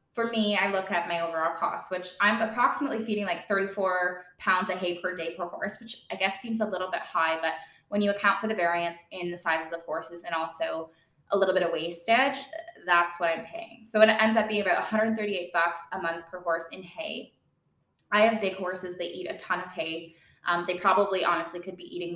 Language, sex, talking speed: English, female, 225 wpm